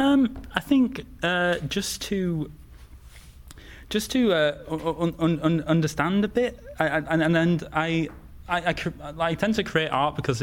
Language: English